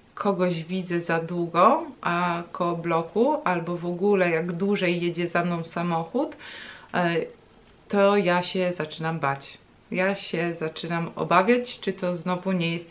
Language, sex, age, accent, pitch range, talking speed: Polish, female, 20-39, native, 160-195 Hz, 135 wpm